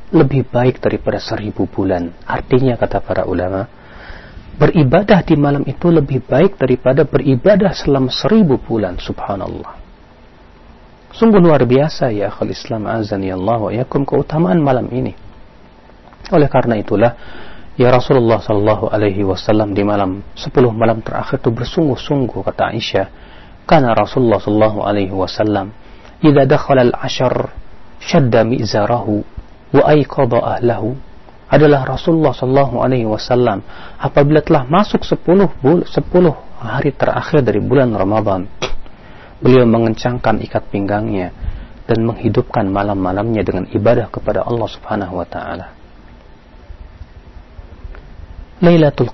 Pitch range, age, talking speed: 100-135 Hz, 40-59, 115 wpm